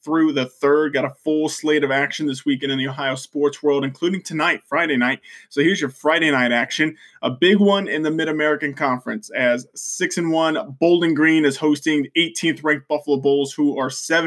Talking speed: 200 wpm